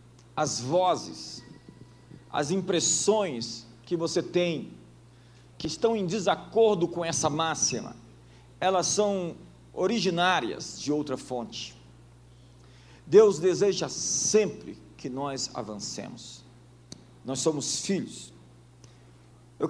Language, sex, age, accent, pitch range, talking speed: Portuguese, male, 50-69, Brazilian, 120-175 Hz, 90 wpm